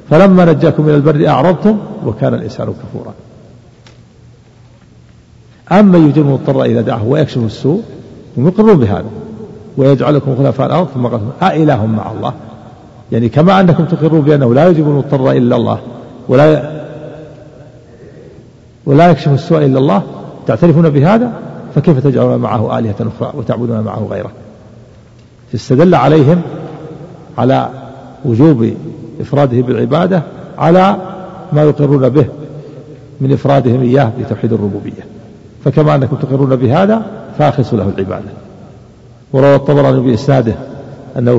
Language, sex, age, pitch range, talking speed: Arabic, male, 50-69, 120-150 Hz, 110 wpm